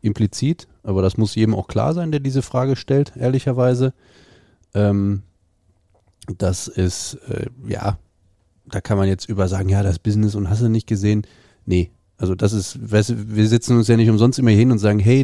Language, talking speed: German, 180 wpm